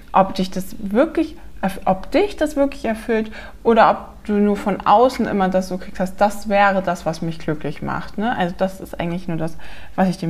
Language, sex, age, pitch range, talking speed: German, female, 20-39, 185-225 Hz, 215 wpm